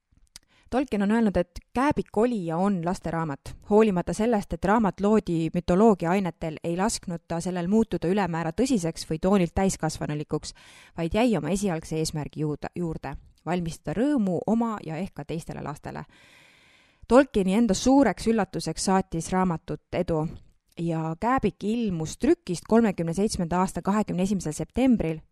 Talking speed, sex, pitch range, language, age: 125 wpm, female, 165-210 Hz, English, 20-39